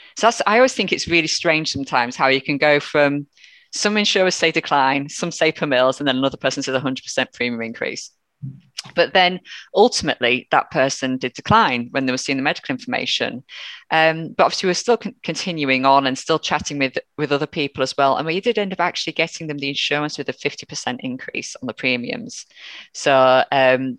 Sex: female